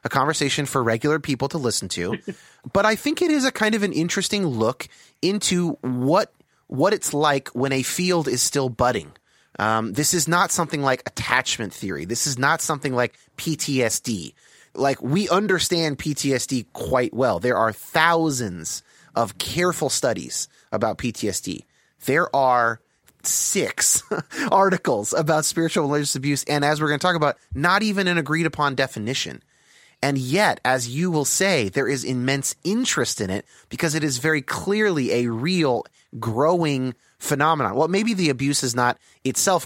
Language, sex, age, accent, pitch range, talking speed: English, male, 30-49, American, 120-165 Hz, 160 wpm